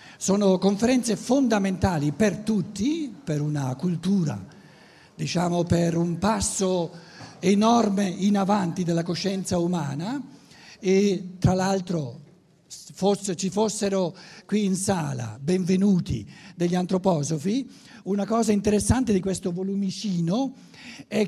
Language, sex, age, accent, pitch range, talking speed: Italian, male, 60-79, native, 170-210 Hz, 100 wpm